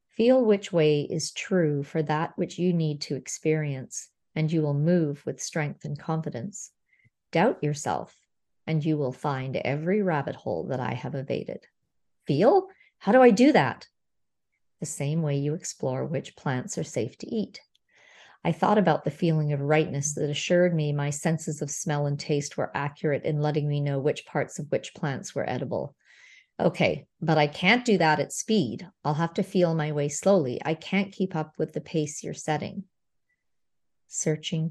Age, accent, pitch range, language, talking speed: 40-59, American, 150-175 Hz, English, 180 wpm